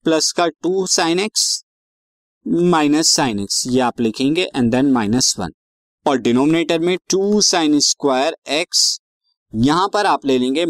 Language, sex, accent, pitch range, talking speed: Hindi, male, native, 120-165 Hz, 145 wpm